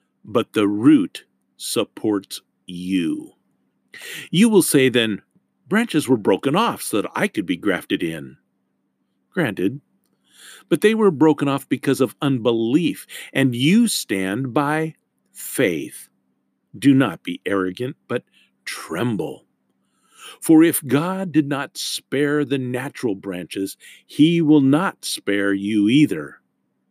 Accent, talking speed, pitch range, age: American, 125 wpm, 95-155 Hz, 50-69